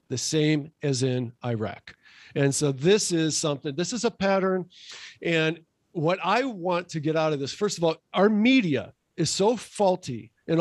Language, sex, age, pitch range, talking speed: English, male, 50-69, 145-185 Hz, 180 wpm